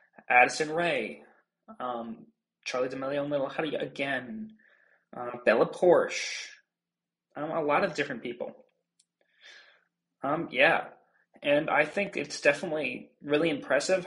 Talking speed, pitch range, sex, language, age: 115 wpm, 135-185 Hz, male, English, 20-39